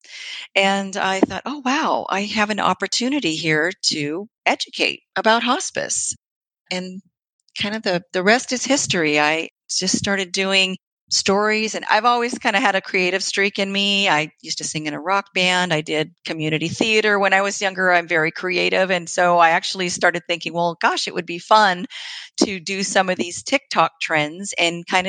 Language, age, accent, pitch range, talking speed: English, 40-59, American, 160-200 Hz, 185 wpm